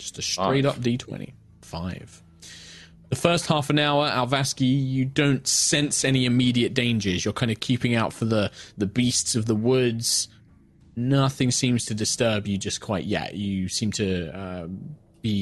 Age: 20-39